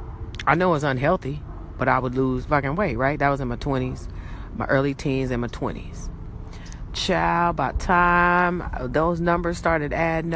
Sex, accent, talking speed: female, American, 170 wpm